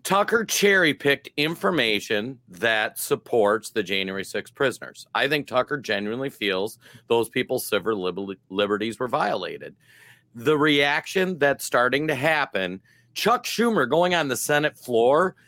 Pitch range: 115-150 Hz